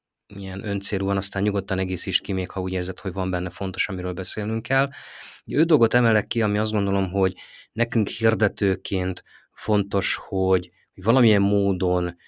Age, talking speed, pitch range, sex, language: 30-49, 155 wpm, 90-105 Hz, male, Hungarian